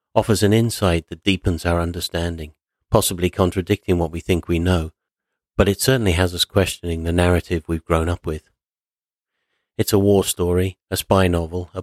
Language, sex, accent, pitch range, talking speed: English, male, British, 85-95 Hz, 170 wpm